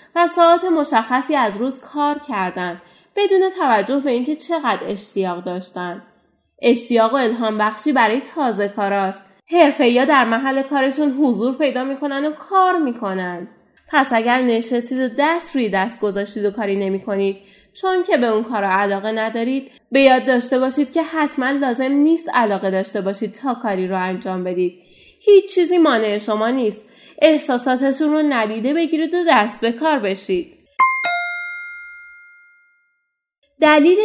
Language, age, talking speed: Persian, 30-49, 140 wpm